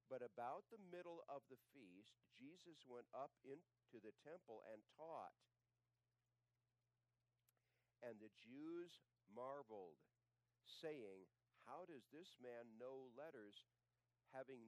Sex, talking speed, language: male, 110 wpm, English